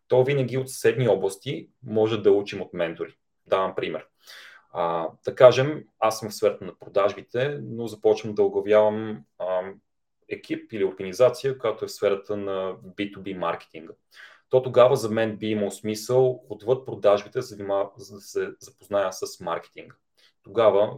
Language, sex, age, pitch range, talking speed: Bulgarian, male, 30-49, 100-140 Hz, 155 wpm